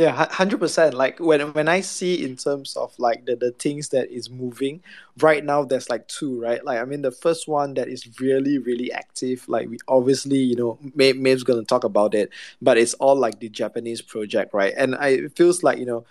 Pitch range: 120-145 Hz